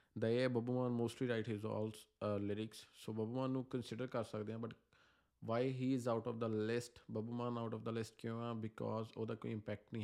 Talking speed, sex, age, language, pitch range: 210 wpm, male, 20-39, Punjabi, 105-115 Hz